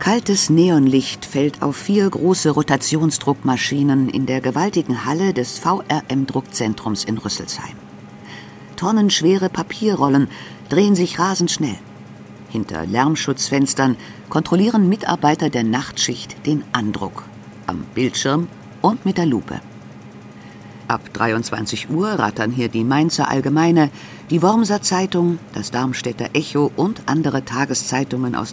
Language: German